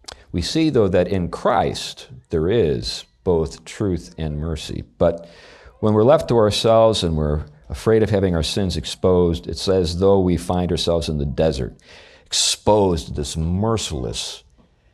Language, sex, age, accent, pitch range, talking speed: English, male, 50-69, American, 80-105 Hz, 155 wpm